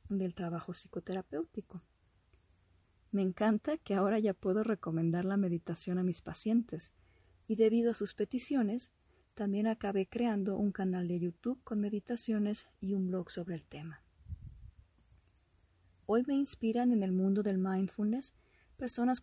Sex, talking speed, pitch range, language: female, 135 wpm, 180-230 Hz, Spanish